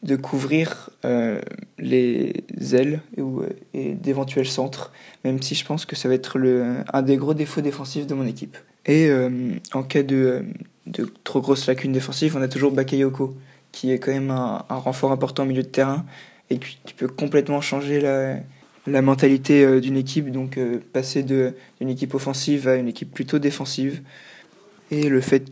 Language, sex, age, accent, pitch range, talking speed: French, male, 20-39, French, 130-145 Hz, 185 wpm